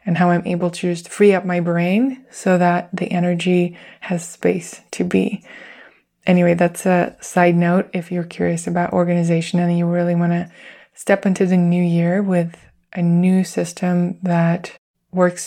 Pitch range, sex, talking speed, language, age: 175-195 Hz, female, 170 wpm, English, 20-39